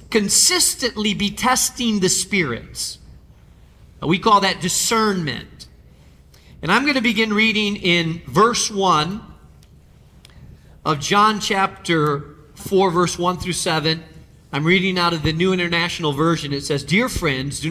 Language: English